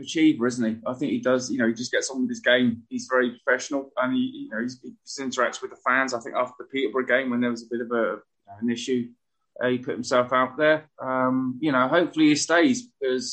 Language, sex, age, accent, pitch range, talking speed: English, male, 20-39, British, 120-150 Hz, 260 wpm